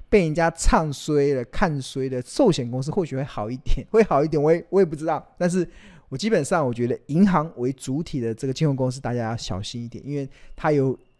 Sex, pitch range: male, 125-175 Hz